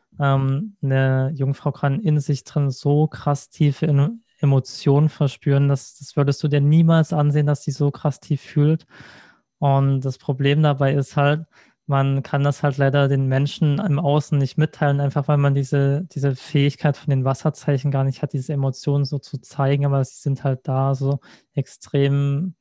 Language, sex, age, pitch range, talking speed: German, male, 20-39, 135-150 Hz, 175 wpm